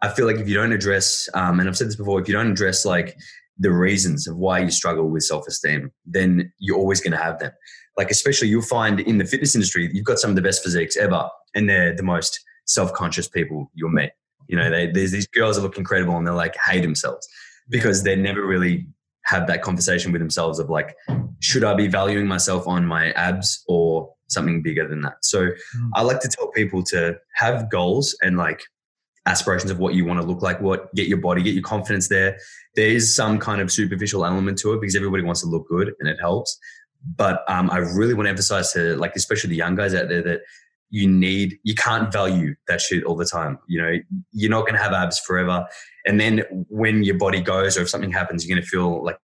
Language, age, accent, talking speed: English, 20-39, Australian, 235 wpm